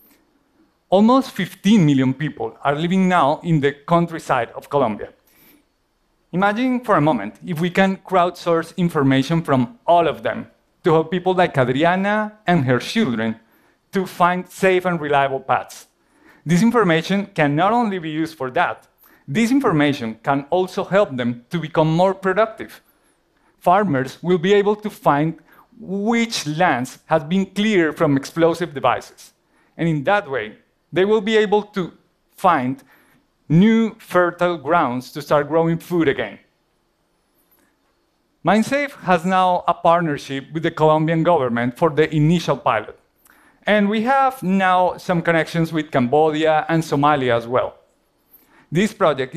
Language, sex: Korean, male